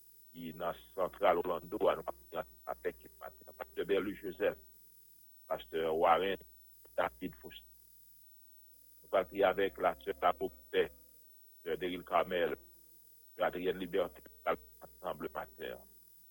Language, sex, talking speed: English, male, 120 wpm